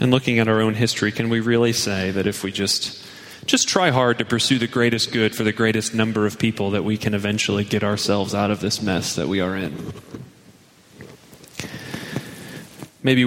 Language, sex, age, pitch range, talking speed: English, male, 30-49, 105-140 Hz, 195 wpm